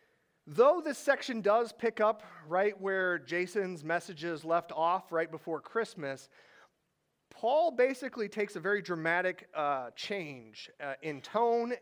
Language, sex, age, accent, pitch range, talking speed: English, male, 40-59, American, 150-205 Hz, 130 wpm